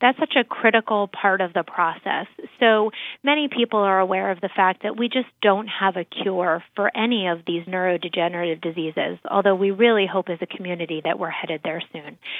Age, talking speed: 30-49, 200 wpm